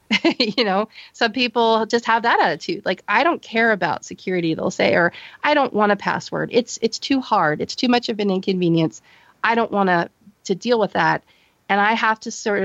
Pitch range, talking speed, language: 170-225 Hz, 215 wpm, English